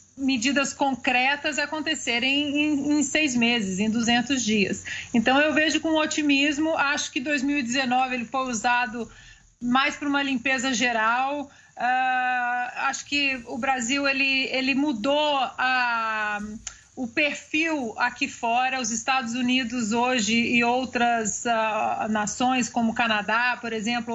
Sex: female